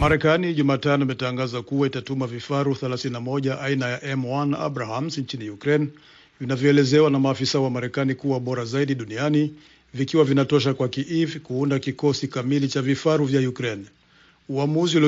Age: 50-69